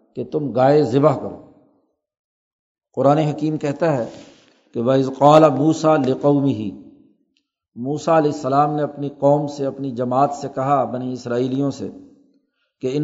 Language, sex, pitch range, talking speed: Urdu, male, 140-180 Hz, 135 wpm